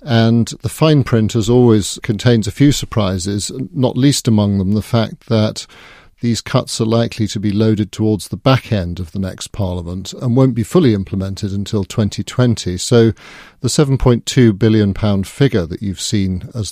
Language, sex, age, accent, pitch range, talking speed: English, male, 40-59, British, 100-120 Hz, 170 wpm